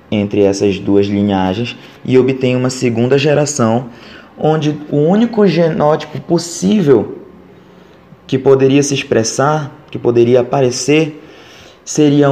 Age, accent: 20-39, Brazilian